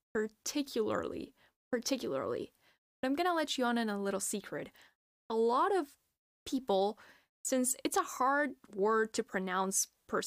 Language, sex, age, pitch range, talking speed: English, female, 10-29, 215-275 Hz, 135 wpm